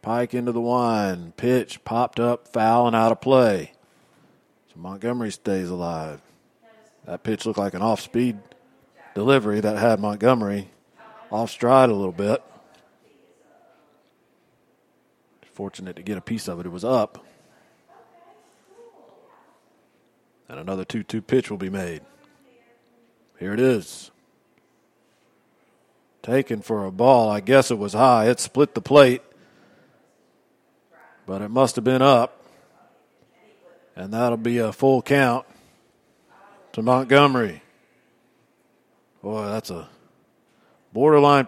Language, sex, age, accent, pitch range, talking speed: English, male, 40-59, American, 105-130 Hz, 115 wpm